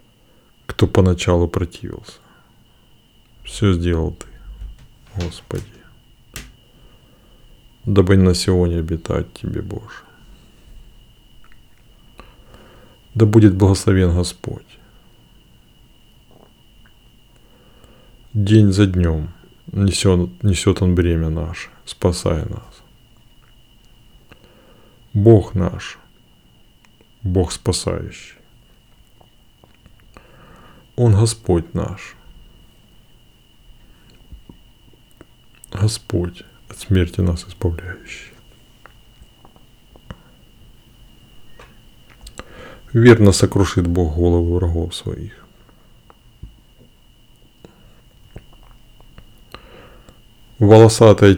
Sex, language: male, Russian